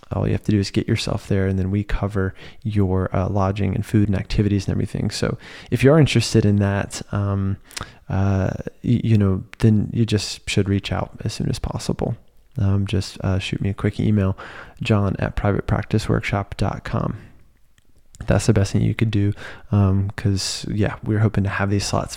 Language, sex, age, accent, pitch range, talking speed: English, male, 20-39, American, 100-120 Hz, 190 wpm